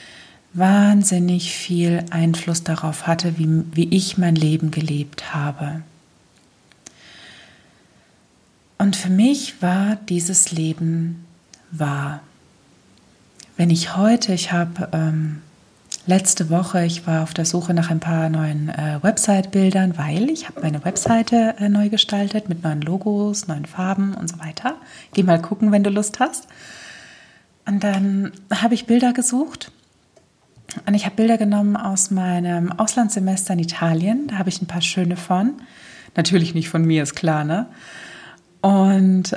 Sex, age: female, 30-49